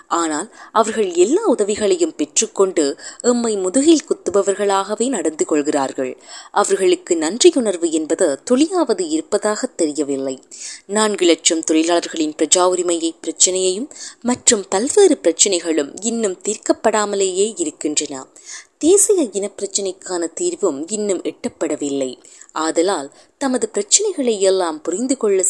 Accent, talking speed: native, 85 wpm